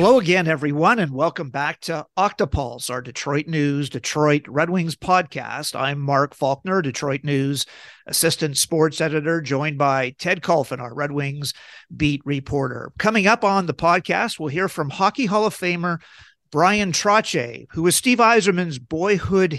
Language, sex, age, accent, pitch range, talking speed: English, male, 50-69, American, 145-190 Hz, 160 wpm